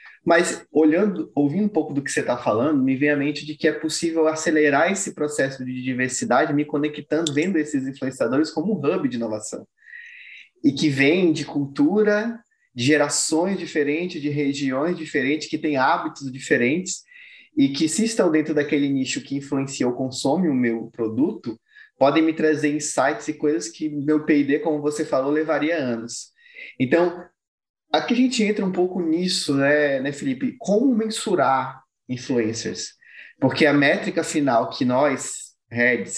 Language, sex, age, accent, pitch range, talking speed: Portuguese, male, 20-39, Brazilian, 130-175 Hz, 160 wpm